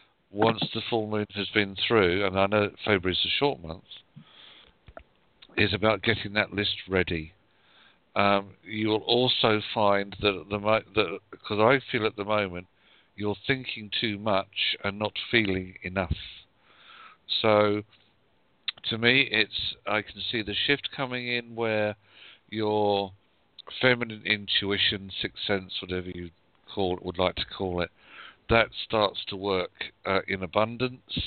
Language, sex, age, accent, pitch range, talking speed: English, male, 50-69, British, 95-110 Hz, 140 wpm